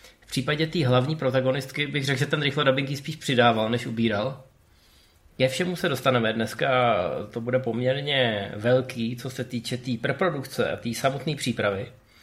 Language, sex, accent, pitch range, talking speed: Czech, male, native, 120-160 Hz, 170 wpm